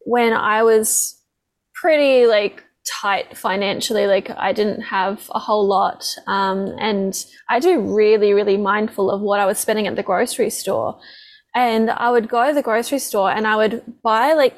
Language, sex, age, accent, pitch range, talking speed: English, female, 10-29, Australian, 220-255 Hz, 175 wpm